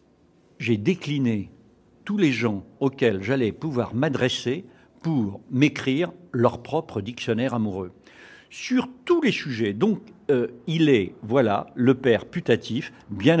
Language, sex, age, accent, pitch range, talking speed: French, male, 50-69, French, 100-135 Hz, 125 wpm